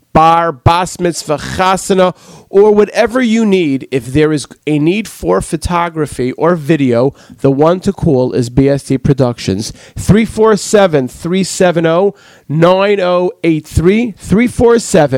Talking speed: 100 wpm